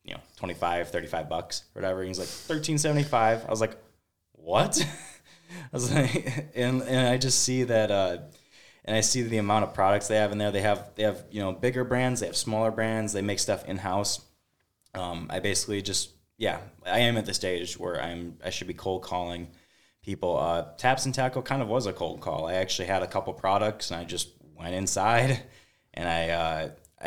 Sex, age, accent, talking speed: male, 20-39, American, 215 wpm